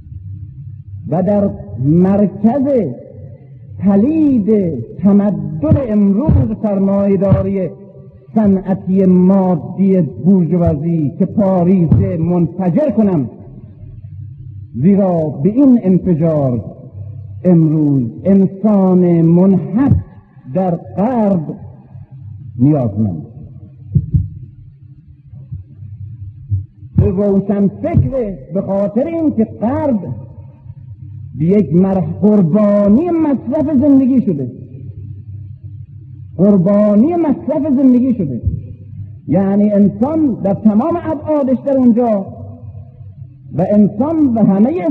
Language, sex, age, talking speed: Persian, male, 50-69, 70 wpm